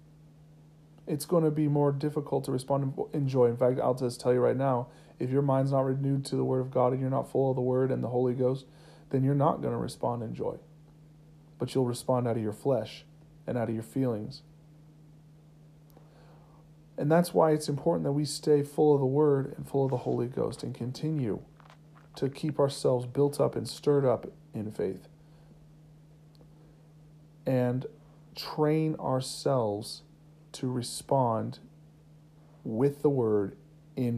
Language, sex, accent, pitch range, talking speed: English, male, American, 135-155 Hz, 170 wpm